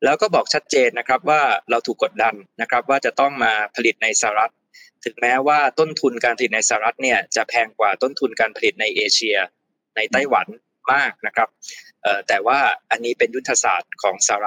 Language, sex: Thai, male